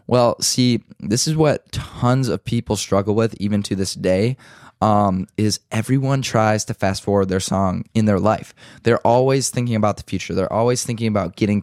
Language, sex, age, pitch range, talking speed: English, male, 10-29, 95-115 Hz, 190 wpm